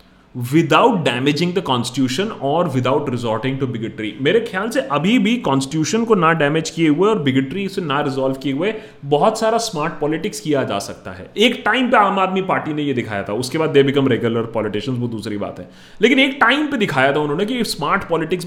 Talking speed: 210 wpm